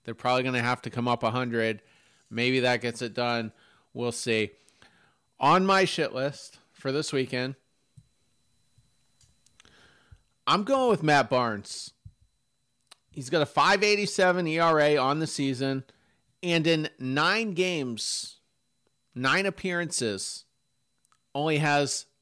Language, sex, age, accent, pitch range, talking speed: English, male, 40-59, American, 125-150 Hz, 120 wpm